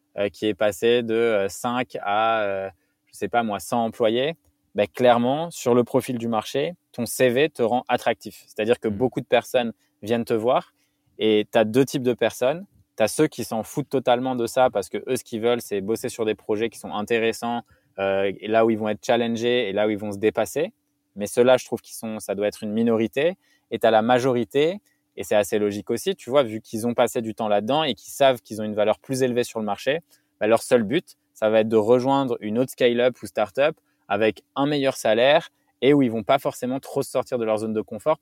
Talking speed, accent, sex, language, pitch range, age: 235 wpm, French, male, French, 110-130 Hz, 20-39